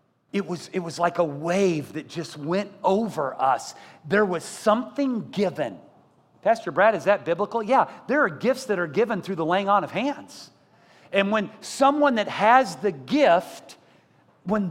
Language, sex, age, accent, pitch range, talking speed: English, male, 50-69, American, 215-300 Hz, 165 wpm